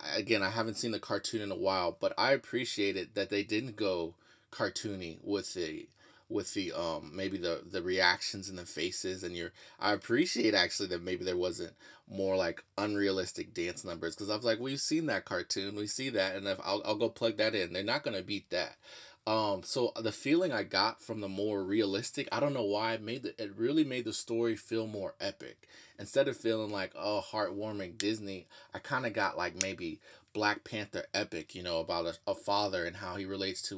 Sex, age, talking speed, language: male, 20-39, 215 wpm, English